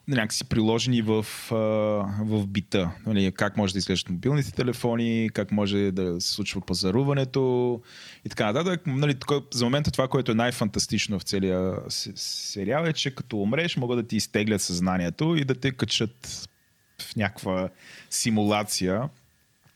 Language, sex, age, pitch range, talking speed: Bulgarian, male, 20-39, 100-125 Hz, 145 wpm